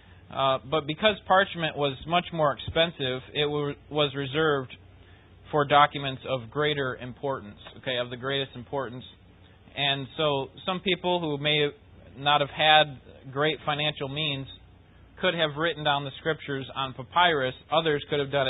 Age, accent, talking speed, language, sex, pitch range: 30-49, American, 145 wpm, English, male, 120-160 Hz